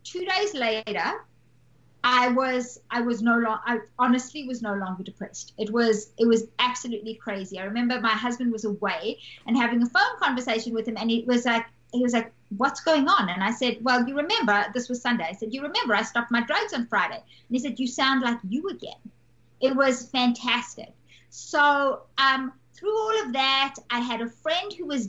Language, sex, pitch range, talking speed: English, female, 220-270 Hz, 205 wpm